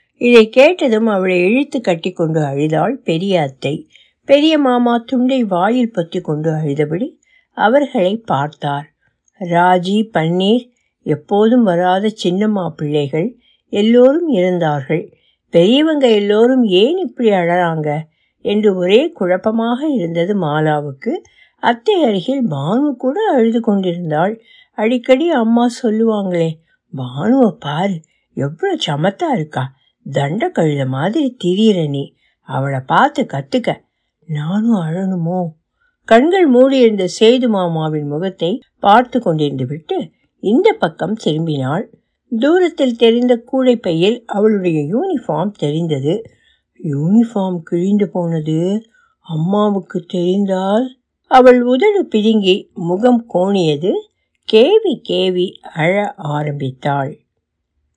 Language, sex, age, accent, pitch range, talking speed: Tamil, female, 60-79, native, 155-245 Hz, 90 wpm